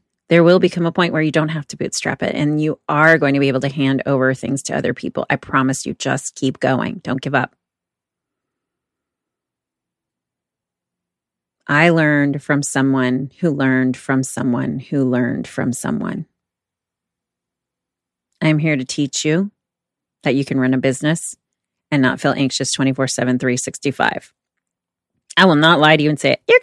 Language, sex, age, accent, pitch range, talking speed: English, female, 30-49, American, 135-190 Hz, 165 wpm